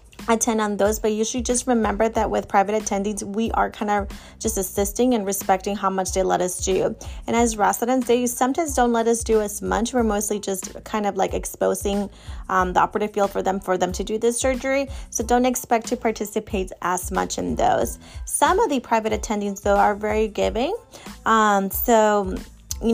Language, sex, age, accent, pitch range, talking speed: English, female, 20-39, American, 200-230 Hz, 200 wpm